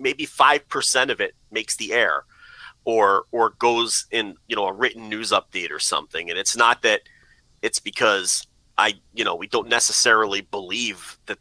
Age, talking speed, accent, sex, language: 30-49, 180 wpm, American, male, English